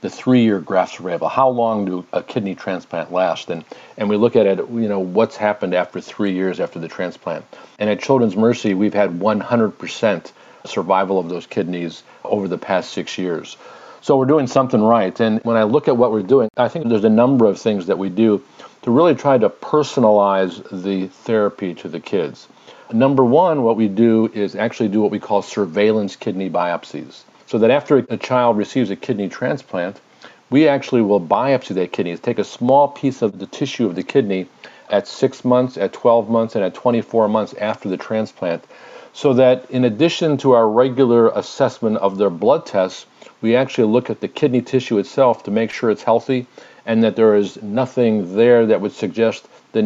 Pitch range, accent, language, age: 105-125 Hz, American, English, 50-69